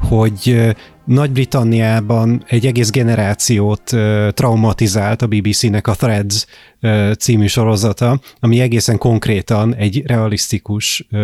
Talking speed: 90 wpm